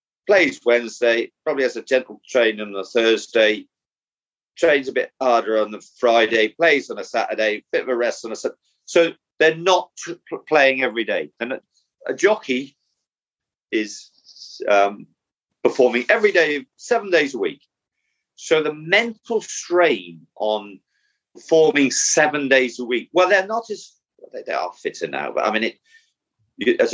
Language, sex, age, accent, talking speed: English, male, 40-59, British, 165 wpm